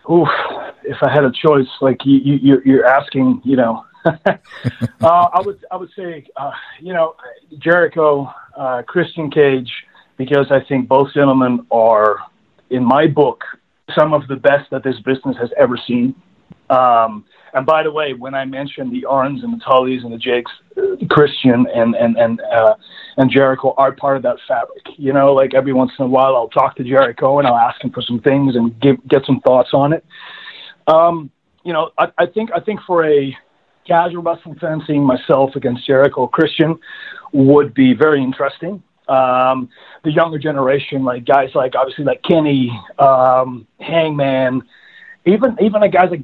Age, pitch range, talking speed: 40-59, 130-165 Hz, 180 wpm